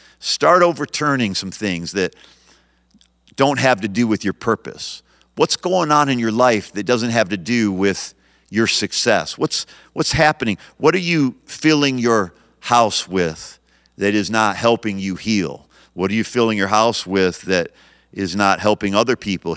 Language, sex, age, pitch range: English, male, 50-69, 95-120 Hz